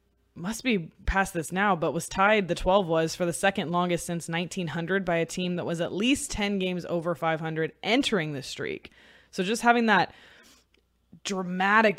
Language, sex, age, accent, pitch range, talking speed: English, female, 20-39, American, 175-215 Hz, 180 wpm